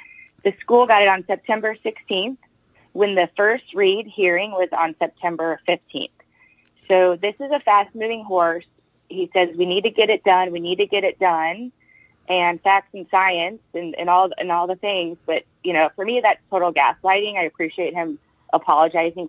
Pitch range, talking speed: 170-215 Hz, 185 wpm